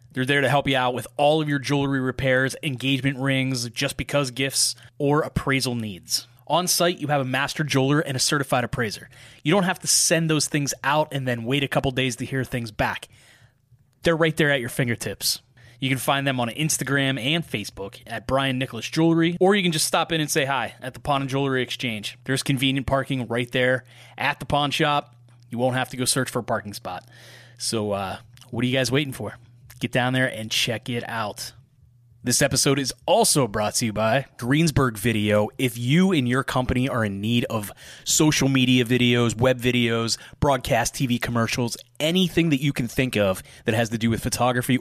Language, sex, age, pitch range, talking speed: English, male, 20-39, 120-140 Hz, 210 wpm